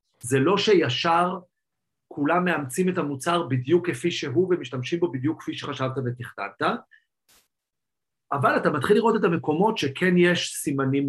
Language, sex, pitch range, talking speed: Hebrew, male, 125-170 Hz, 135 wpm